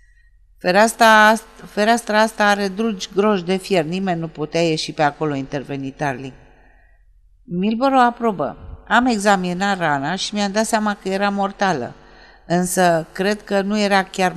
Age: 50-69